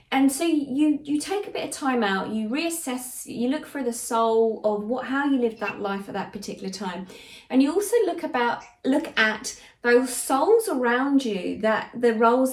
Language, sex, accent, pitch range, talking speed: English, female, British, 205-255 Hz, 200 wpm